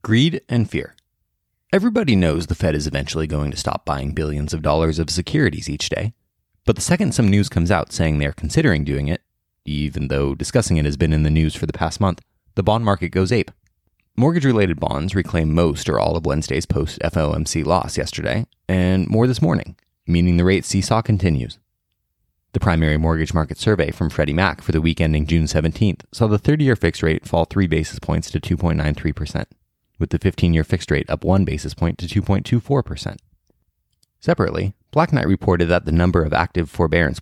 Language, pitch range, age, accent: English, 80-100 Hz, 20-39, American